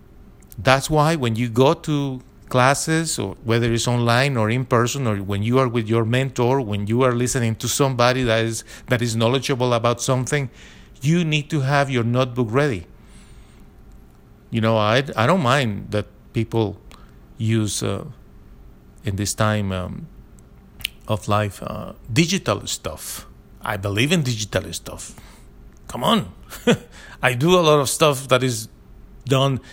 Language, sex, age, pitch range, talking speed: English, male, 50-69, 110-140 Hz, 155 wpm